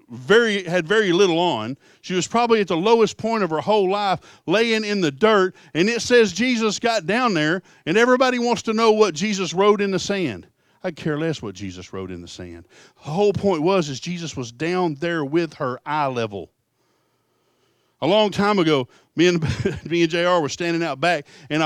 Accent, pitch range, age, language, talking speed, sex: American, 140-200 Hz, 50-69, English, 205 wpm, male